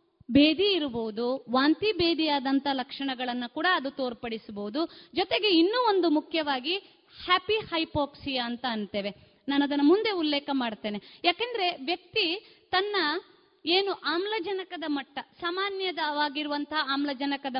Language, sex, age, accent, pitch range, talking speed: Kannada, female, 20-39, native, 255-360 Hz, 100 wpm